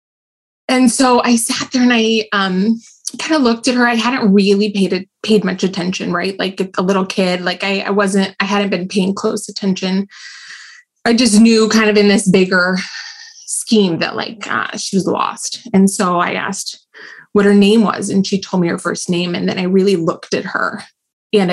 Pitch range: 195-235 Hz